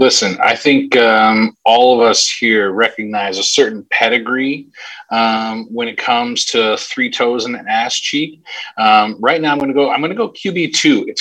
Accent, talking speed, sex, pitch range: American, 200 wpm, male, 115-155 Hz